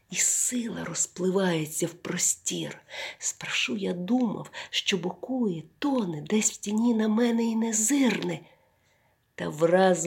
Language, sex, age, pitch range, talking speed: Ukrainian, female, 40-59, 170-225 Hz, 120 wpm